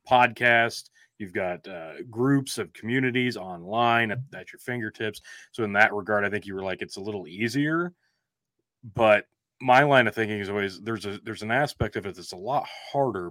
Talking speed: 195 wpm